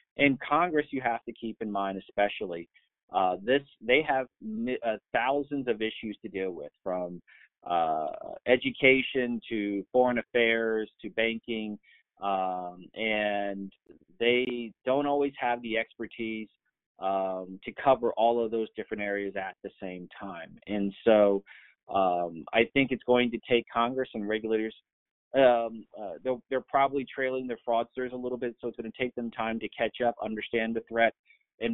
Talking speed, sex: 160 wpm, male